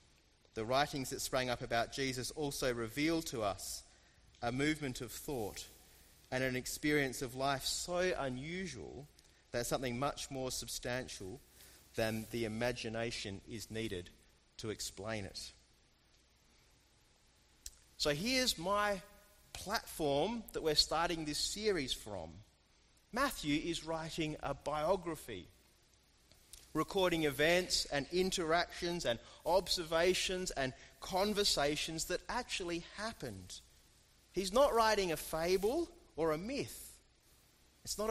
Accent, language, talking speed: Australian, English, 110 wpm